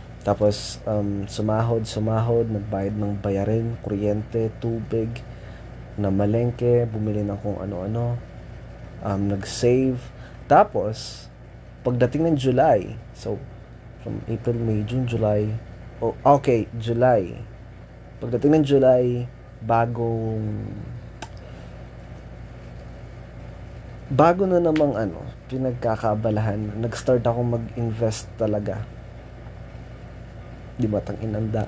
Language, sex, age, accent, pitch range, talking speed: Filipino, male, 20-39, native, 110-120 Hz, 90 wpm